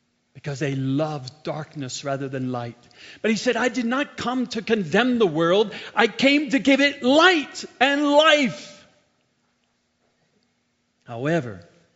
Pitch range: 140-225 Hz